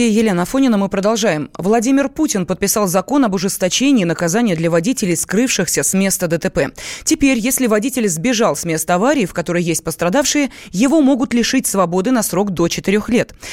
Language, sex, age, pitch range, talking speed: Russian, female, 20-39, 180-255 Hz, 165 wpm